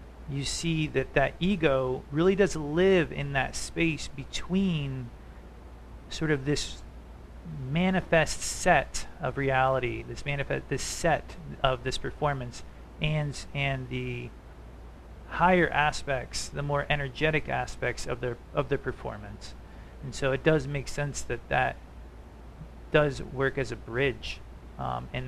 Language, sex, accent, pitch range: English, male, American, 110-140 Hz